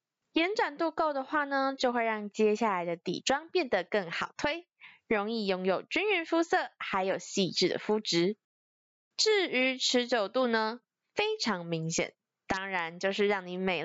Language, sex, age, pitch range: Chinese, female, 20-39, 185-305 Hz